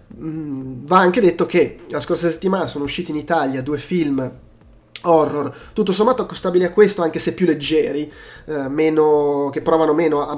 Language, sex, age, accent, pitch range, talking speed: Italian, male, 20-39, native, 140-165 Hz, 170 wpm